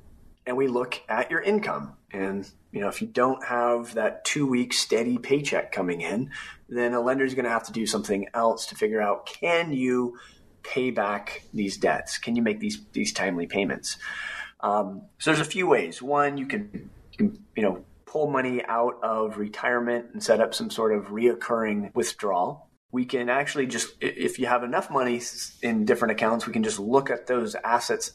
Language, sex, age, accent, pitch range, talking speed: English, male, 30-49, American, 110-165 Hz, 195 wpm